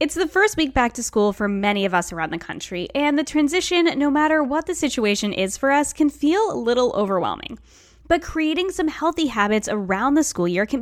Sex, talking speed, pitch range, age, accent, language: female, 220 wpm, 215-310 Hz, 10-29, American, English